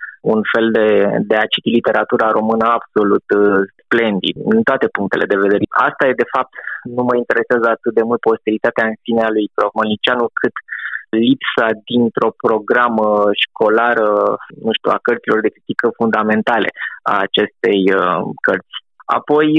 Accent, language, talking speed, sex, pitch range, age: native, Romanian, 145 wpm, male, 110-135 Hz, 20-39